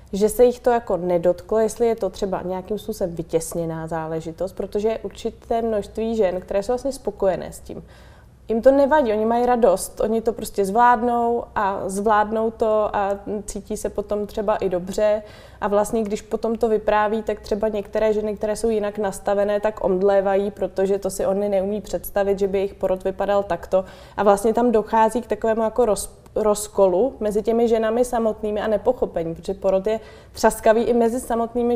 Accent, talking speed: native, 180 wpm